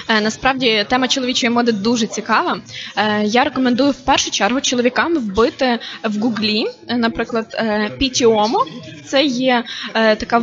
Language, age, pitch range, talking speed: Ukrainian, 20-39, 225-270 Hz, 115 wpm